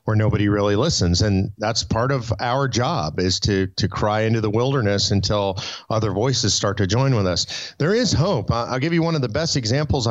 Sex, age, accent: male, 40-59, American